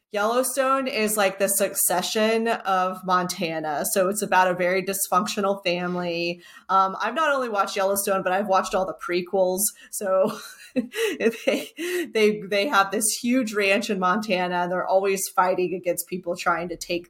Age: 30-49